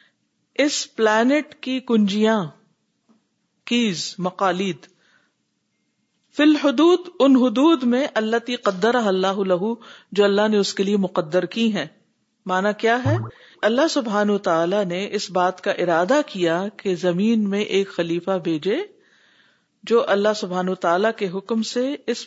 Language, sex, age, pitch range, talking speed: Urdu, female, 50-69, 185-240 Hz, 130 wpm